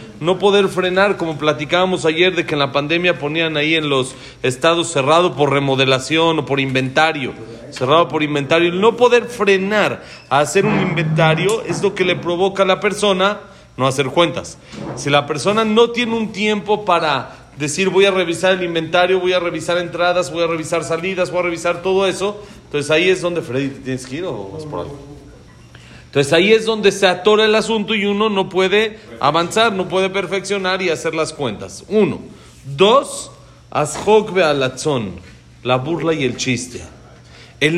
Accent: Mexican